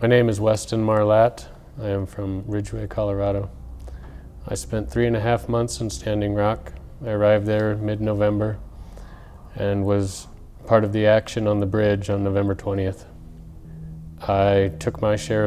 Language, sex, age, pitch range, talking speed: English, male, 30-49, 95-110 Hz, 155 wpm